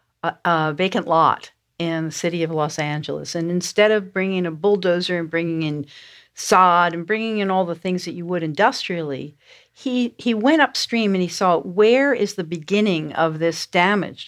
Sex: female